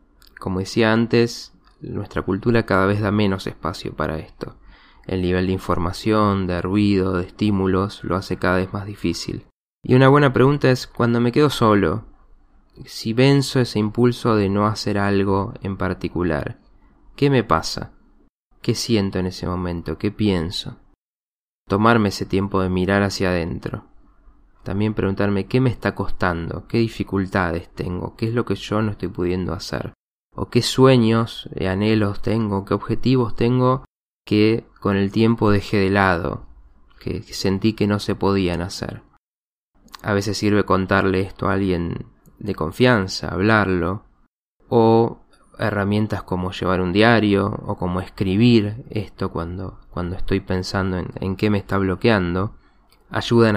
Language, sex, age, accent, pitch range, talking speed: Spanish, male, 20-39, Argentinian, 90-110 Hz, 150 wpm